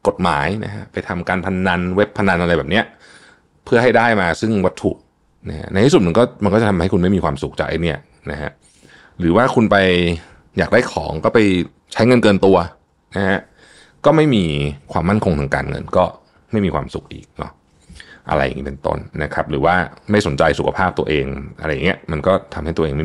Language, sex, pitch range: Thai, male, 80-105 Hz